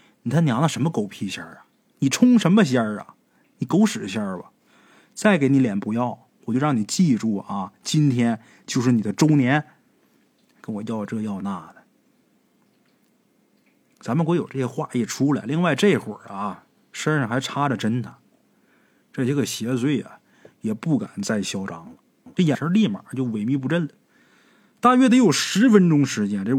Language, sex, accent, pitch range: Chinese, male, native, 125-215 Hz